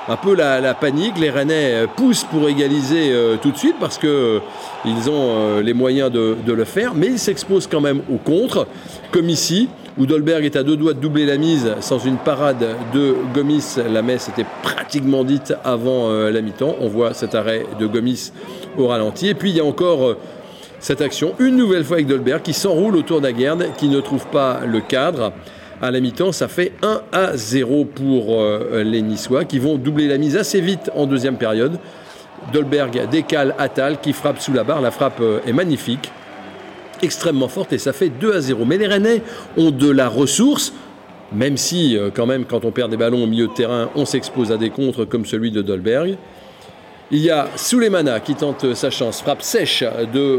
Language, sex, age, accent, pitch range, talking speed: French, male, 40-59, French, 120-160 Hz, 205 wpm